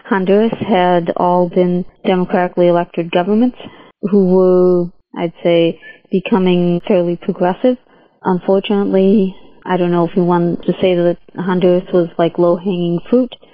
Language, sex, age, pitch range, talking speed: English, female, 30-49, 175-200 Hz, 130 wpm